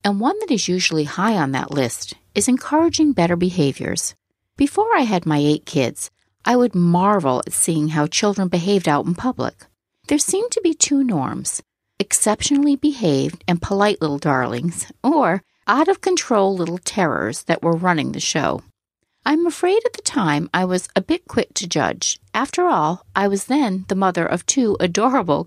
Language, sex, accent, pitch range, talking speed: English, female, American, 165-255 Hz, 180 wpm